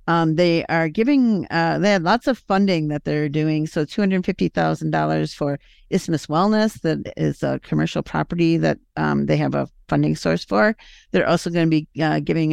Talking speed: 180 wpm